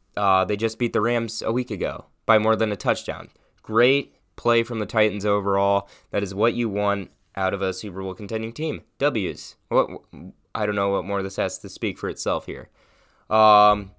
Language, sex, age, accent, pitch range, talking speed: English, male, 20-39, American, 95-115 Hz, 210 wpm